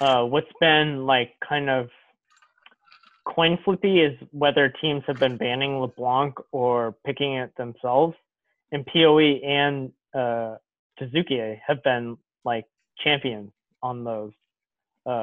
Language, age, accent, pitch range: English, 20-39, American, 125-150 Hz